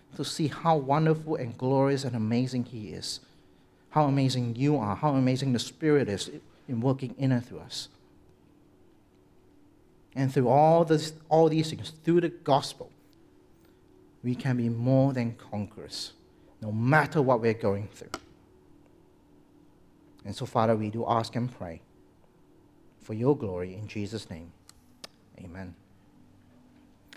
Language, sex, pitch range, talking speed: English, male, 115-160 Hz, 135 wpm